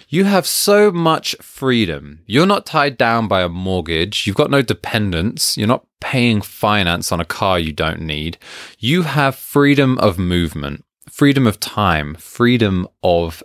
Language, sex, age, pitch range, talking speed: English, male, 20-39, 85-135 Hz, 160 wpm